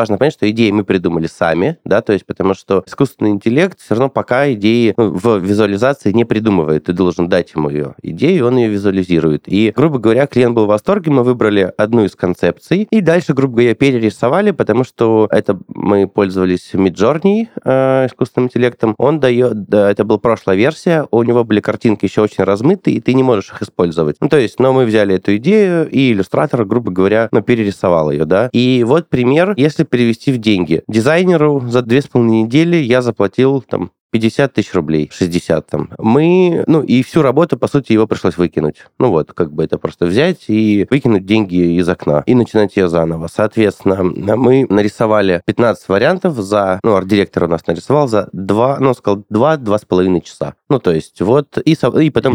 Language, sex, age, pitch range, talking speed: Russian, male, 20-39, 100-135 Hz, 190 wpm